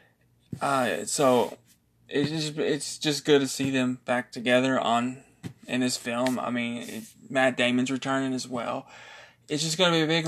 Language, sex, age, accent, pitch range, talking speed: English, male, 20-39, American, 125-145 Hz, 180 wpm